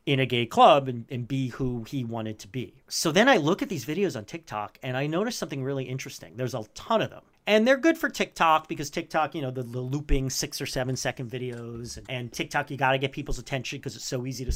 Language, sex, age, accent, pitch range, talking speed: English, male, 40-59, American, 130-170 Hz, 260 wpm